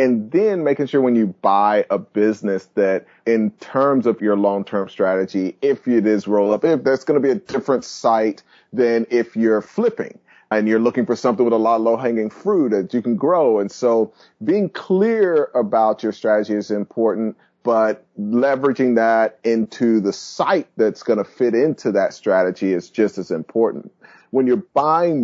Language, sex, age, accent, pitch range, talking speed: English, male, 30-49, American, 105-120 Hz, 185 wpm